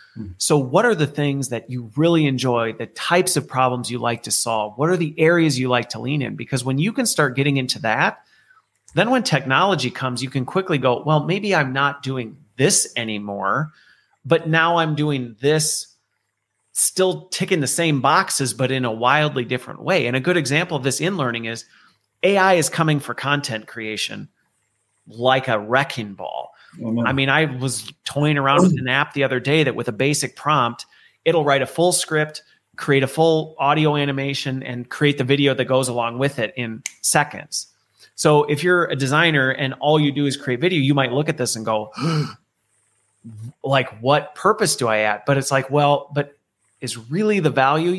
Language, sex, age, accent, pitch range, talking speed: English, male, 30-49, American, 125-155 Hz, 195 wpm